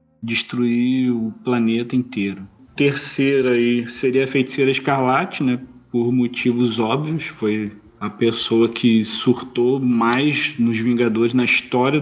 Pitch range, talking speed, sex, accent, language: 115-145 Hz, 120 wpm, male, Brazilian, Portuguese